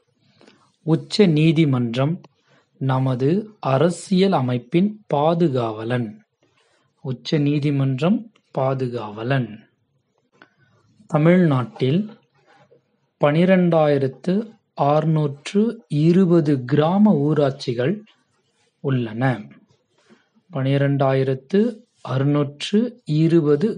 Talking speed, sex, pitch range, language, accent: 35 wpm, male, 135-180 Hz, Tamil, native